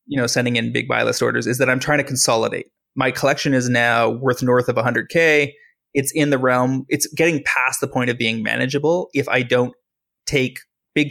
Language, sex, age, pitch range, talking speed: English, male, 20-39, 120-145 Hz, 210 wpm